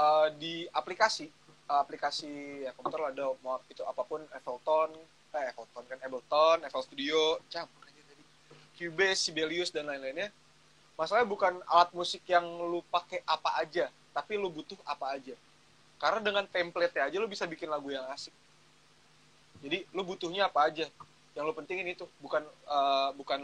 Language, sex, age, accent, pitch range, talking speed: Indonesian, male, 20-39, native, 140-175 Hz, 155 wpm